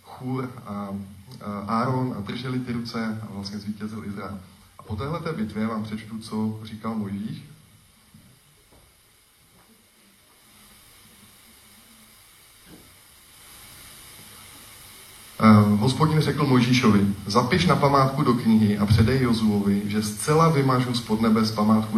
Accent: native